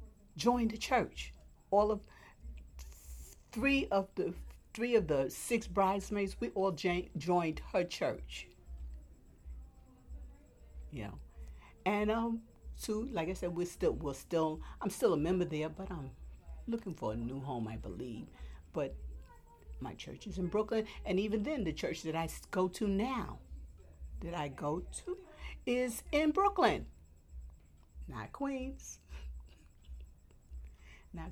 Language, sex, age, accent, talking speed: English, female, 50-69, American, 135 wpm